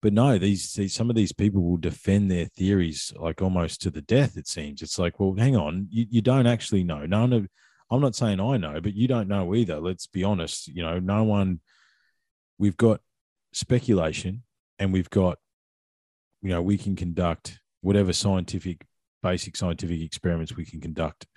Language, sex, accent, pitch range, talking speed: English, male, Australian, 85-105 Hz, 190 wpm